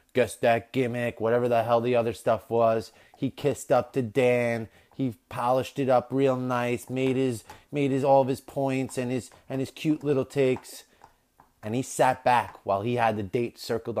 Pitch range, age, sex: 105-130 Hz, 30-49, male